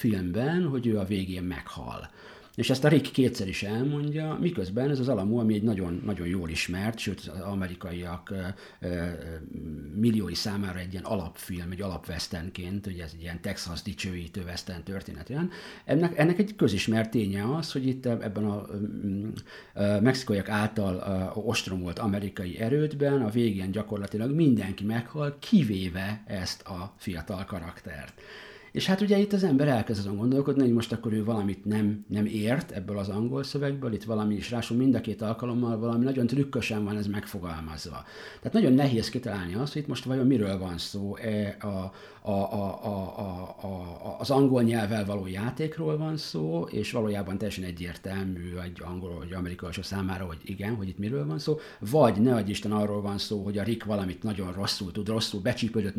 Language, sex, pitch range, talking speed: Hungarian, male, 95-120 Hz, 170 wpm